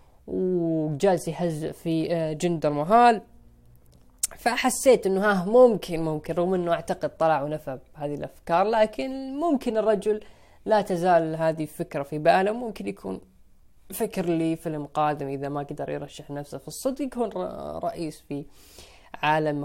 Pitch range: 145-180 Hz